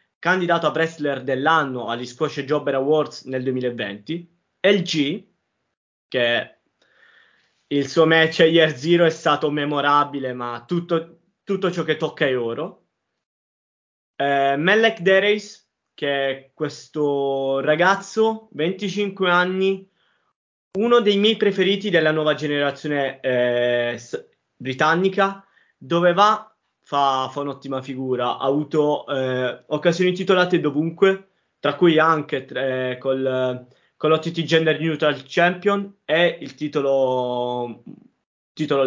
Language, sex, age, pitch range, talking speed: Italian, male, 20-39, 140-185 Hz, 110 wpm